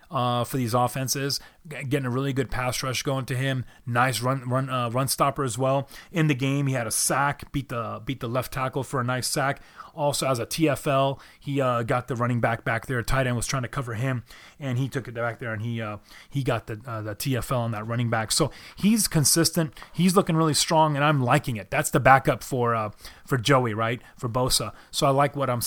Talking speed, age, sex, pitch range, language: 240 wpm, 30-49, male, 120-145 Hz, English